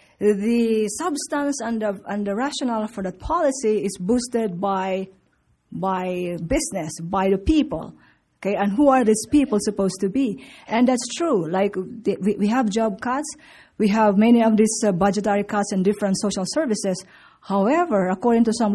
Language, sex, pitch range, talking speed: English, female, 200-250 Hz, 170 wpm